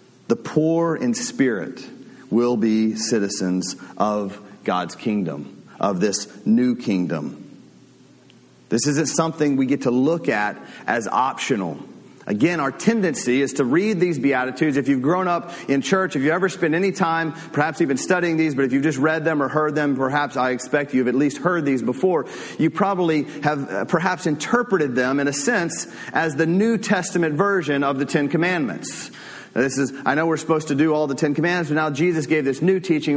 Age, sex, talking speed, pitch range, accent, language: 40-59, male, 185 wpm, 125-165 Hz, American, English